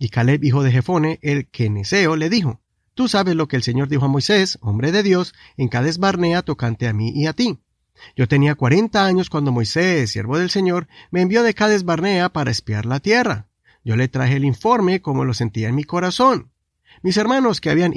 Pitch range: 130-200 Hz